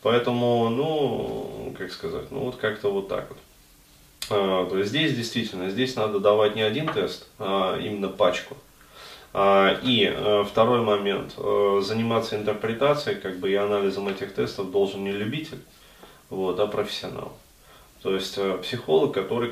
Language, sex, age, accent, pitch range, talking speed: Russian, male, 20-39, native, 100-120 Hz, 135 wpm